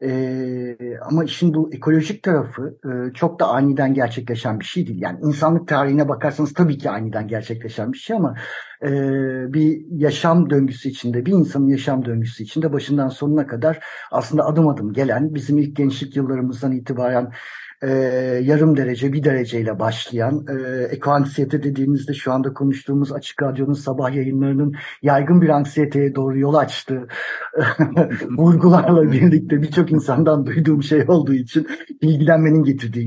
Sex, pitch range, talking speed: male, 130-160 Hz, 140 wpm